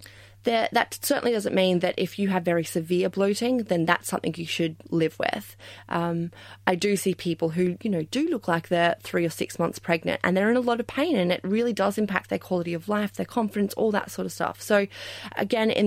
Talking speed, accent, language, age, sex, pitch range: 235 wpm, Australian, English, 20-39, female, 160-200 Hz